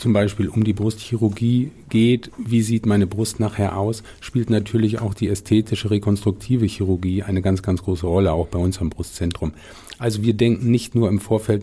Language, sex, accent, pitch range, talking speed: German, male, German, 95-115 Hz, 185 wpm